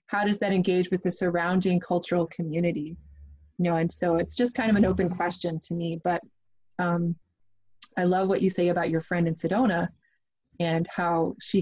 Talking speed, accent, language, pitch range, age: 190 wpm, American, English, 165-200 Hz, 20-39